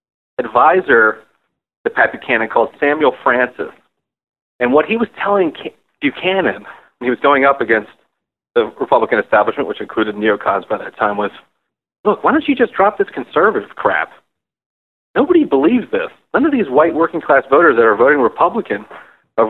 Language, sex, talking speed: English, male, 165 wpm